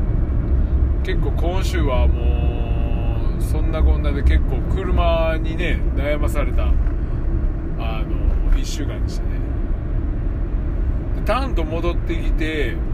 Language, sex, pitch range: Japanese, male, 65-95 Hz